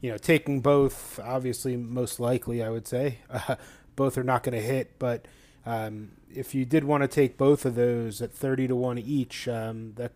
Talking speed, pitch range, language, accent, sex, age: 205 wpm, 120-140 Hz, English, American, male, 30-49